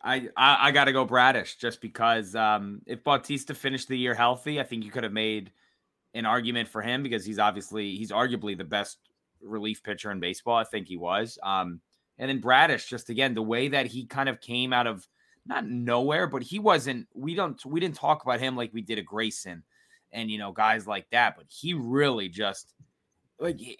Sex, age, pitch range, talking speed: male, 20-39, 115-160 Hz, 210 wpm